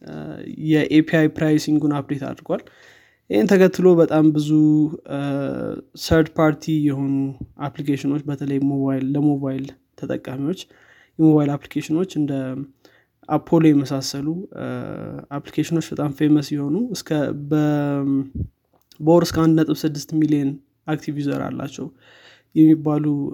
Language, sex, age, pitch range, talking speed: Amharic, male, 20-39, 140-160 Hz, 85 wpm